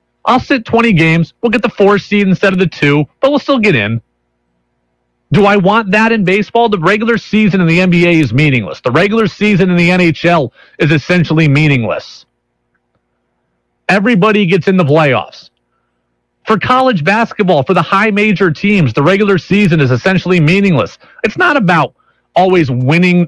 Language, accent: English, American